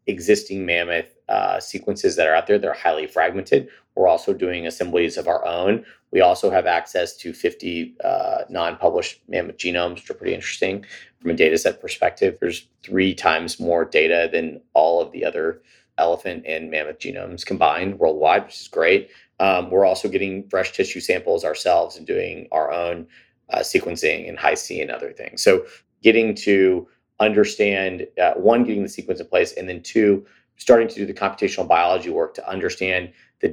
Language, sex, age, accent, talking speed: English, male, 30-49, American, 175 wpm